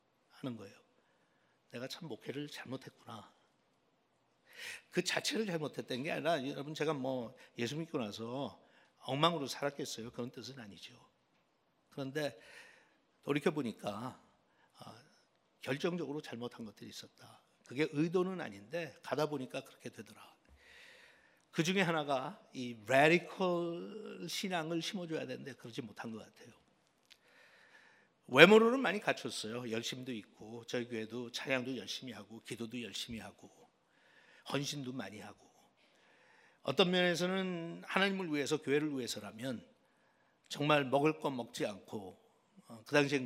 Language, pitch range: Korean, 120-170 Hz